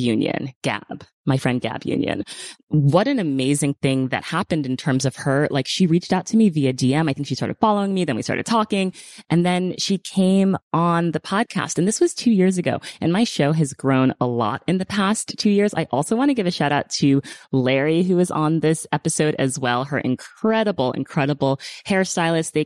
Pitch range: 130-180 Hz